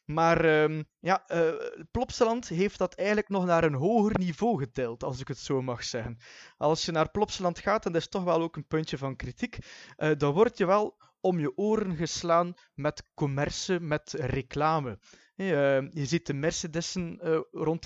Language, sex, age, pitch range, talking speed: Dutch, male, 20-39, 145-180 Hz, 170 wpm